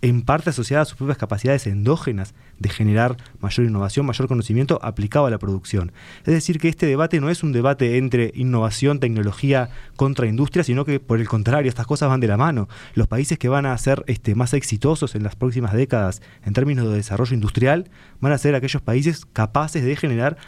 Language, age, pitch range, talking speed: Spanish, 20-39, 110-145 Hz, 200 wpm